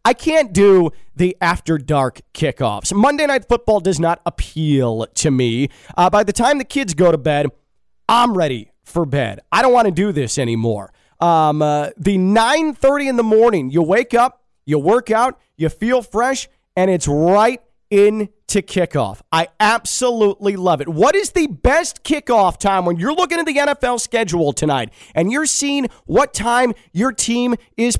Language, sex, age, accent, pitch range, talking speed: English, male, 30-49, American, 165-240 Hz, 175 wpm